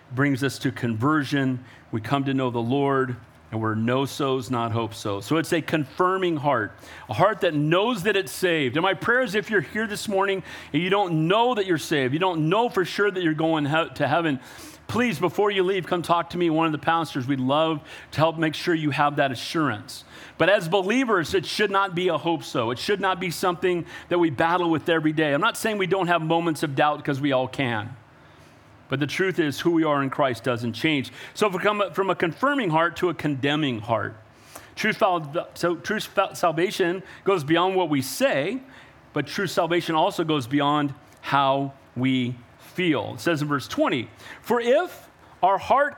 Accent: American